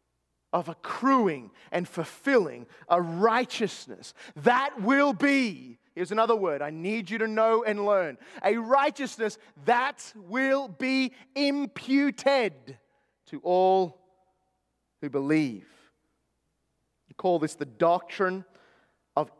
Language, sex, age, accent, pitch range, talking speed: English, male, 30-49, Australian, 195-270 Hz, 110 wpm